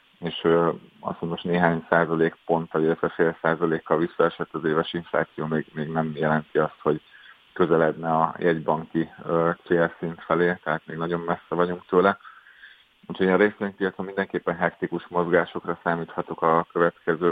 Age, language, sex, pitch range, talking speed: 30-49, Hungarian, male, 80-90 Hz, 150 wpm